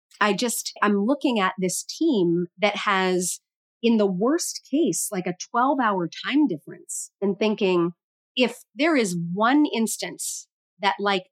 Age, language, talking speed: 30-49, English, 145 wpm